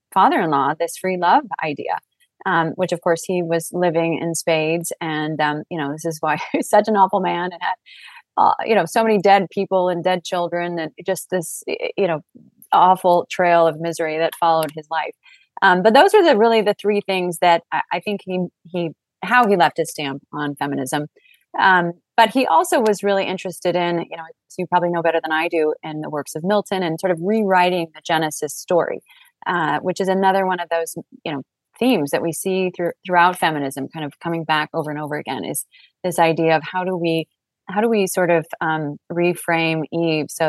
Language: English